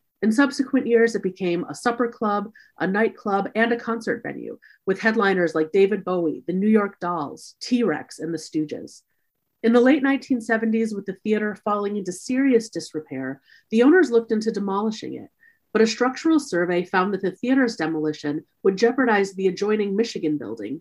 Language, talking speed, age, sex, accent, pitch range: English, 170 wpm, 30-49, female, American, 175-240 Hz